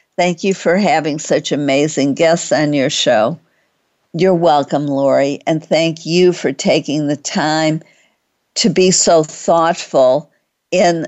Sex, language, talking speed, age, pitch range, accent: female, English, 135 wpm, 50-69, 150-170 Hz, American